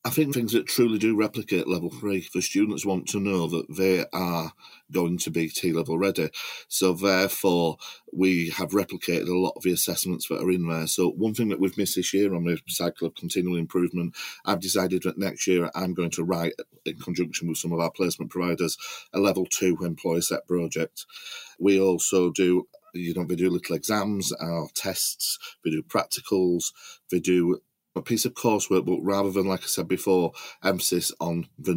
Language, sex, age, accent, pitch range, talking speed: English, male, 40-59, British, 85-100 Hz, 195 wpm